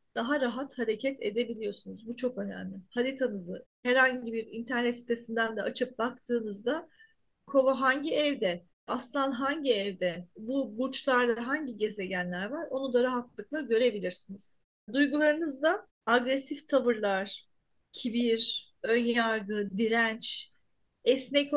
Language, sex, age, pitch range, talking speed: Turkish, female, 40-59, 220-275 Hz, 105 wpm